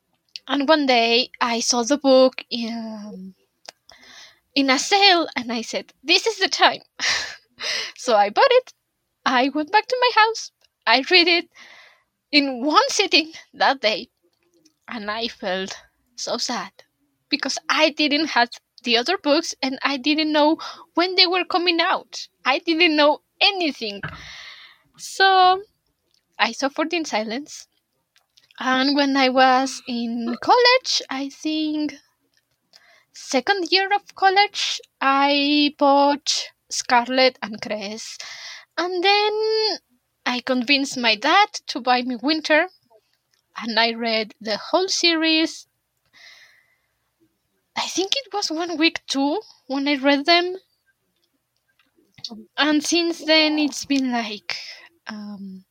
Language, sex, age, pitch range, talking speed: English, female, 10-29, 245-345 Hz, 125 wpm